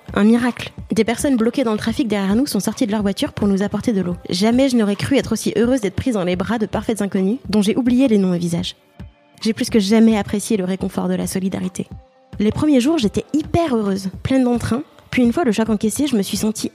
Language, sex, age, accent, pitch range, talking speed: French, female, 20-39, French, 195-235 Hz, 250 wpm